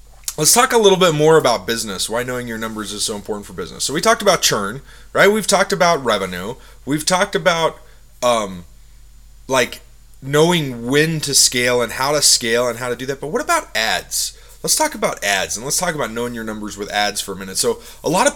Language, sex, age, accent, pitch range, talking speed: English, male, 30-49, American, 110-155 Hz, 225 wpm